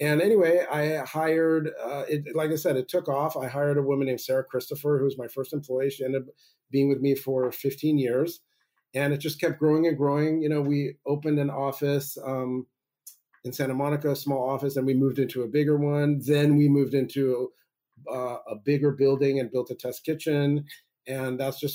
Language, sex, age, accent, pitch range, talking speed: English, male, 40-59, American, 130-145 Hz, 210 wpm